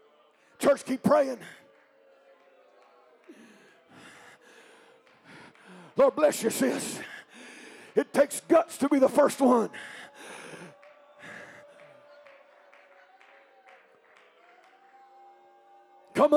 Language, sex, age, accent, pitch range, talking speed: English, male, 50-69, American, 280-330 Hz, 60 wpm